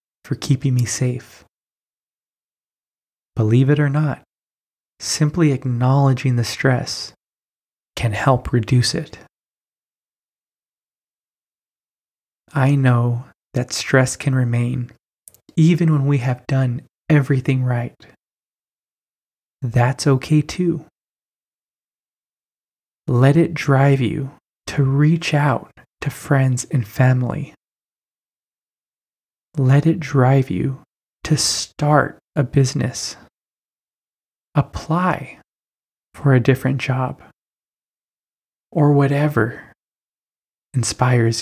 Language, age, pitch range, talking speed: English, 20-39, 125-145 Hz, 85 wpm